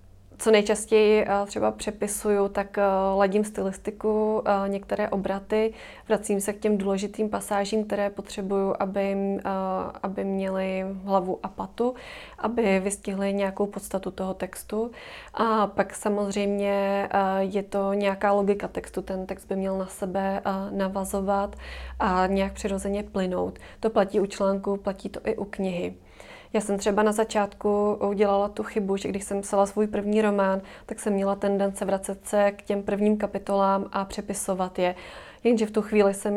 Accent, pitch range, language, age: native, 195-205 Hz, Czech, 20-39